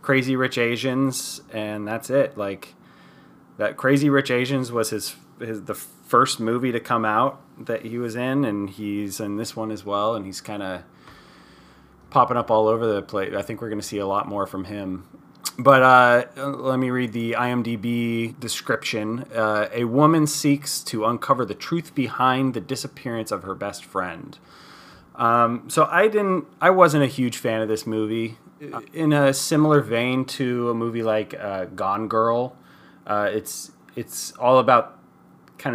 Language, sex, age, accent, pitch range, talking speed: English, male, 30-49, American, 105-135 Hz, 175 wpm